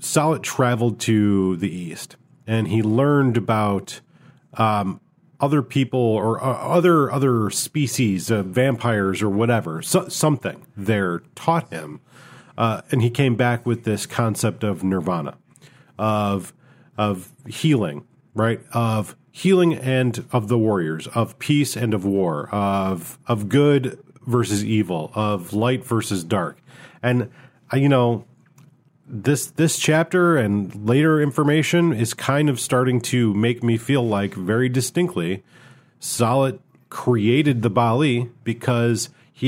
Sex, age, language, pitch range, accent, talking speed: male, 40-59, English, 110-140 Hz, American, 130 wpm